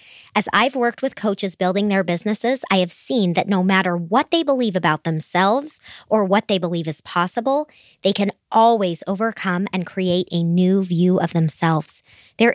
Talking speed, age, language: 175 wpm, 30-49, English